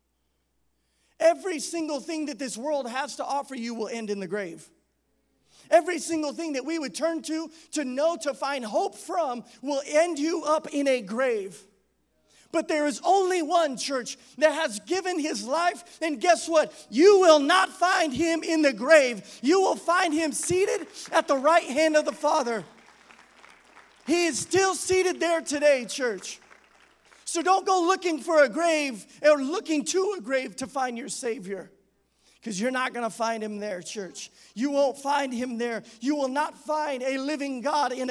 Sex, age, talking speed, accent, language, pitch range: male, 40-59, 180 wpm, American, English, 225-320 Hz